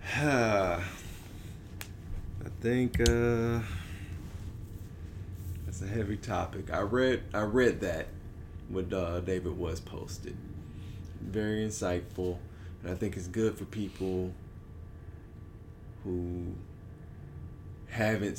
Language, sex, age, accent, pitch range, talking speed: English, male, 20-39, American, 90-105 Hz, 90 wpm